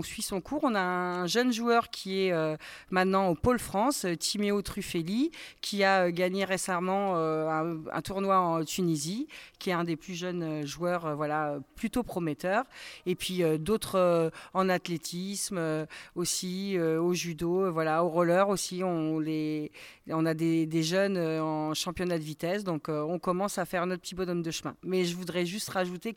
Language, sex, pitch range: French, female, 165-190 Hz